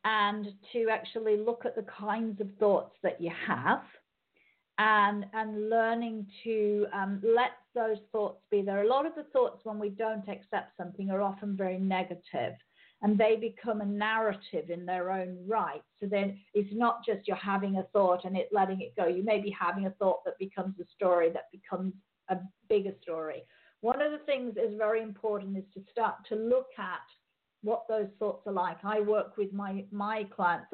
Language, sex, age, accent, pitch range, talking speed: English, female, 50-69, British, 190-220 Hz, 190 wpm